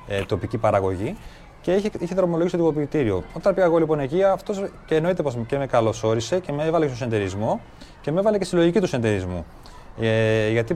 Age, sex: 30-49, male